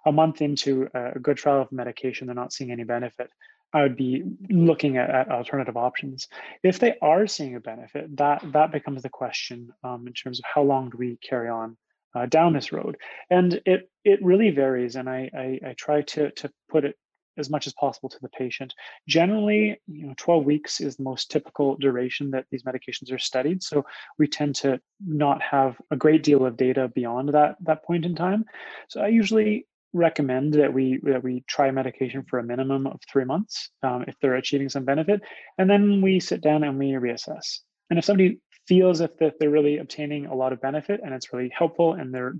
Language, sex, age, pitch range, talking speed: English, male, 30-49, 130-160 Hz, 210 wpm